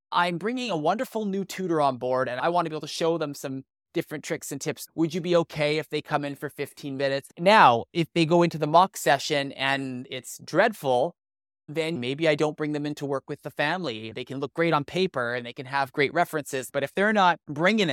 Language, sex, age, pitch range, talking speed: English, male, 20-39, 145-185 Hz, 240 wpm